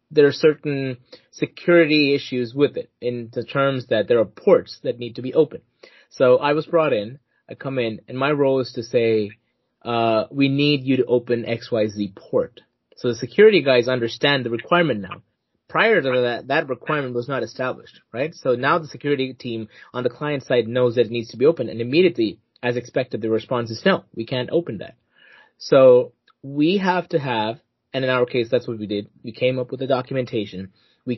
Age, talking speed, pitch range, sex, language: 20-39, 205 wpm, 120-150 Hz, male, English